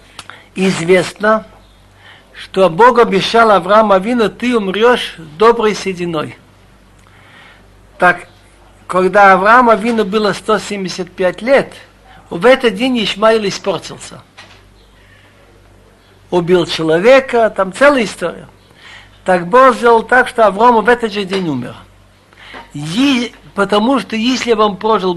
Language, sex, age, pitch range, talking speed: Russian, male, 60-79, 155-230 Hz, 105 wpm